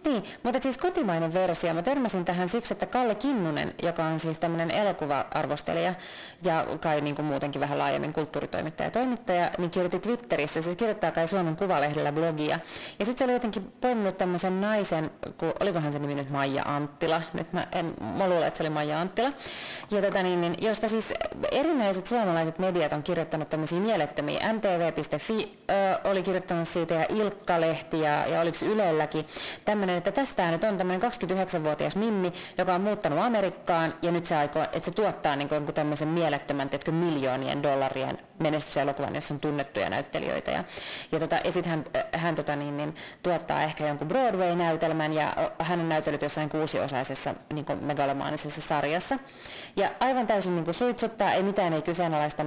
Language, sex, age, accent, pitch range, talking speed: Finnish, female, 30-49, native, 155-200 Hz, 160 wpm